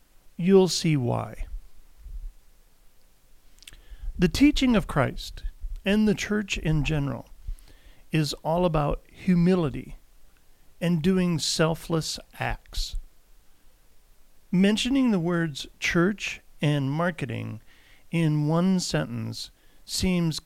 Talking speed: 90 wpm